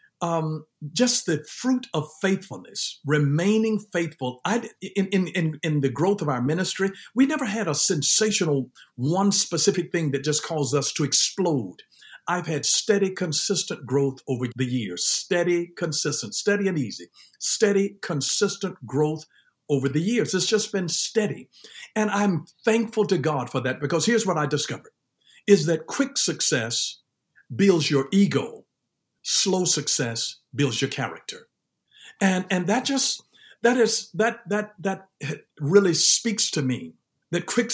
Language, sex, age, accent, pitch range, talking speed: English, male, 50-69, American, 150-205 Hz, 150 wpm